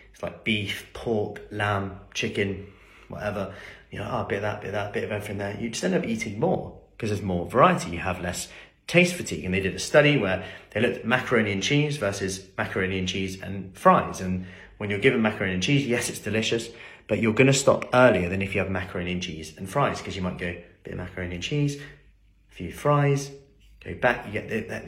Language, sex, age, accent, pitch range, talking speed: English, male, 30-49, British, 95-125 Hz, 240 wpm